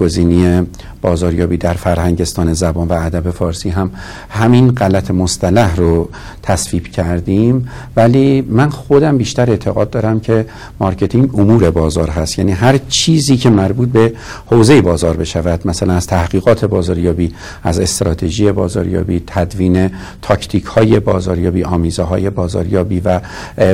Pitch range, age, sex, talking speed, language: 90-115 Hz, 60-79, male, 120 wpm, Persian